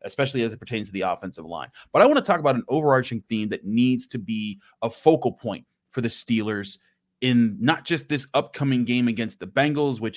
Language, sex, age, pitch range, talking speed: English, male, 30-49, 115-140 Hz, 220 wpm